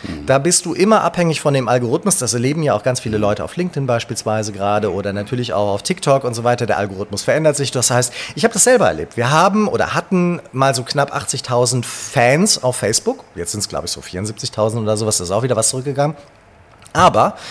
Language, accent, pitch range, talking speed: German, German, 115-155 Hz, 225 wpm